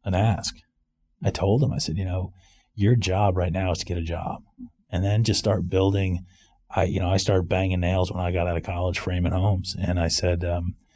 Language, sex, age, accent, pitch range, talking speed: English, male, 30-49, American, 90-115 Hz, 230 wpm